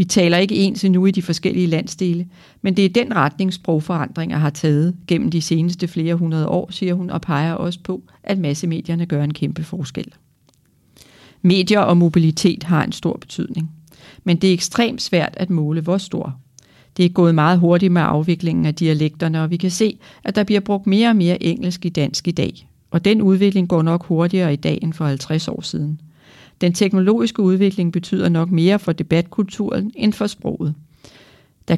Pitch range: 160-190 Hz